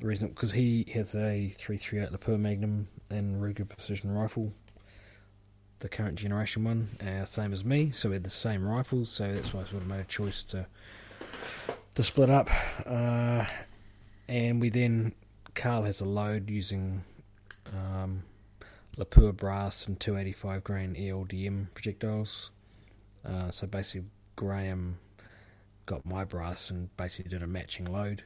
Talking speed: 145 wpm